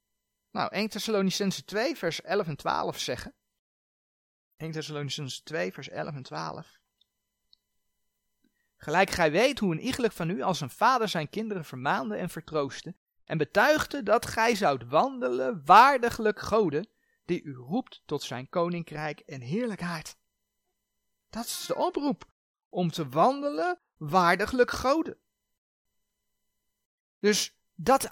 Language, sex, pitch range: Dutch, male, 155-235 Hz